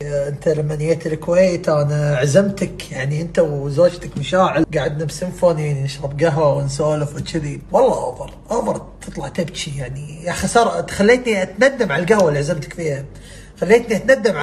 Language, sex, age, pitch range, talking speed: Arabic, male, 30-49, 170-250 Hz, 135 wpm